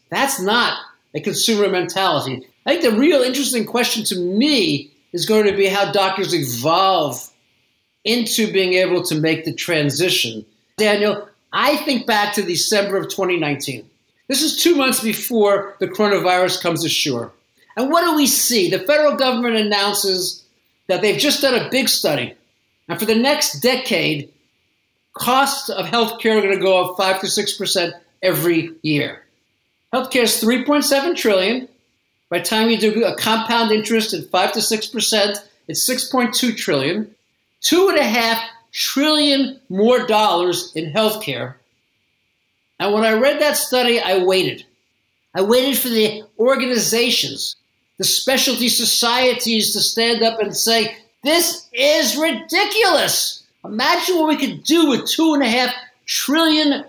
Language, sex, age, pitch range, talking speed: English, male, 50-69, 185-255 Hz, 145 wpm